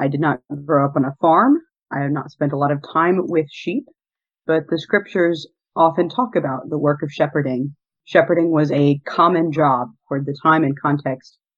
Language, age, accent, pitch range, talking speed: English, 30-49, American, 145-165 Hz, 195 wpm